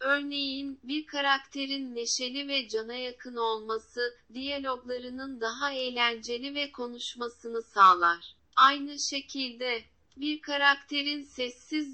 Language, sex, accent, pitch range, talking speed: Turkish, female, native, 240-280 Hz, 95 wpm